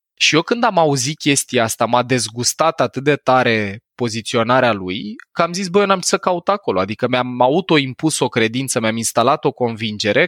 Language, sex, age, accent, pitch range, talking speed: Romanian, male, 20-39, native, 120-170 Hz, 185 wpm